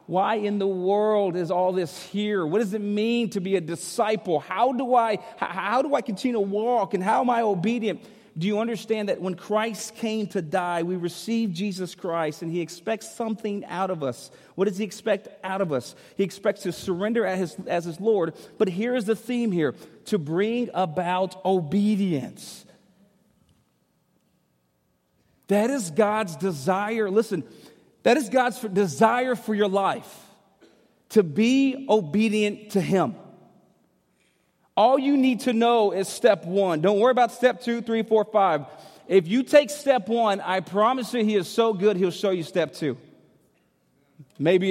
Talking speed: 170 wpm